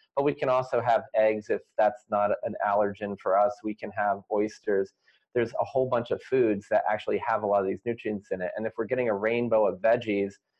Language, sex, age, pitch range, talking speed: English, male, 30-49, 100-120 Hz, 230 wpm